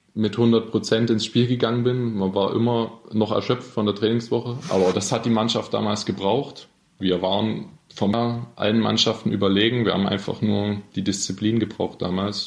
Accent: German